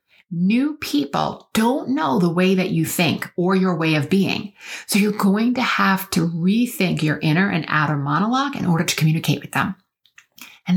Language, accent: English, American